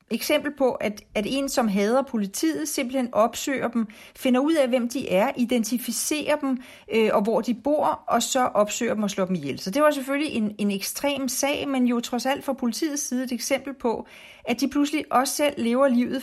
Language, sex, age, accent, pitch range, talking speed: Danish, female, 40-59, native, 210-280 Hz, 210 wpm